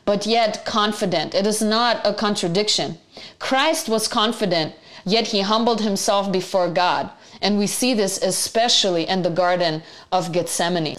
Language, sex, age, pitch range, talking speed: English, female, 30-49, 180-220 Hz, 145 wpm